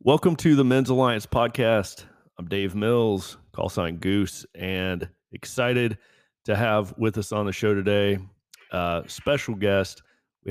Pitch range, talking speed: 90-115 Hz, 155 wpm